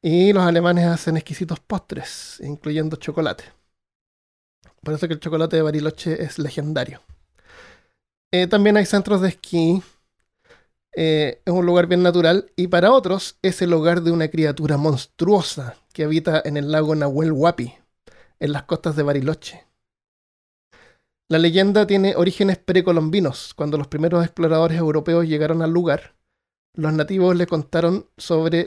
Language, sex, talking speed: Spanish, male, 145 wpm